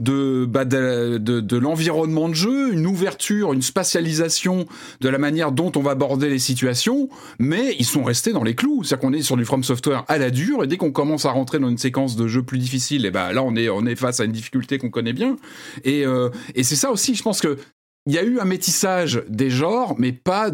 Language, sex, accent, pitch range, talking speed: French, male, French, 125-180 Hz, 250 wpm